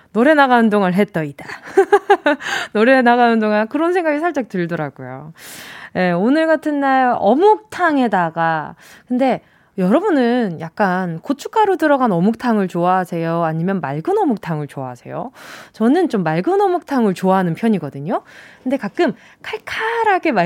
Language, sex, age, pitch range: Korean, female, 20-39, 190-300 Hz